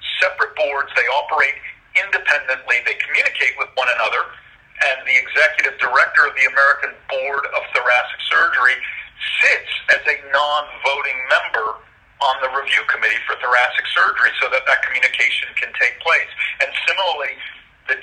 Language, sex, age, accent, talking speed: English, male, 50-69, American, 140 wpm